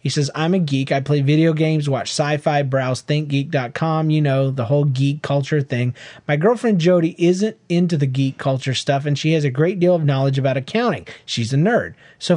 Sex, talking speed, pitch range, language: male, 210 wpm, 140-170 Hz, English